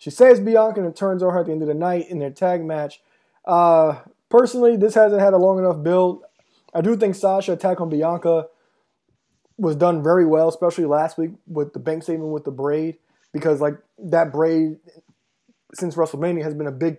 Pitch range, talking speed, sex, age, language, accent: 150-185 Hz, 205 wpm, male, 20-39, English, American